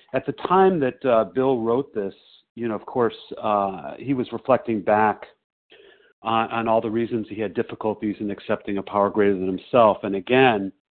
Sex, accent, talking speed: male, American, 185 wpm